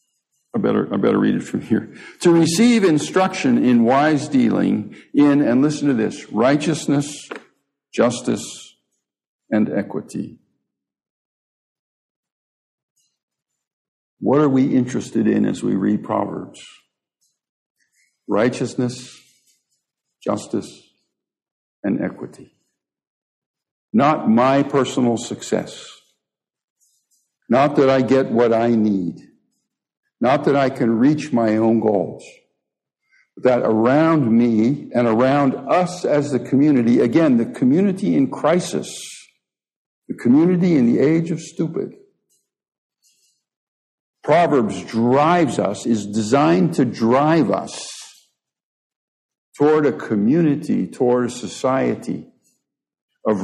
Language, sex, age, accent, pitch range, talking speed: English, male, 60-79, American, 120-165 Hz, 100 wpm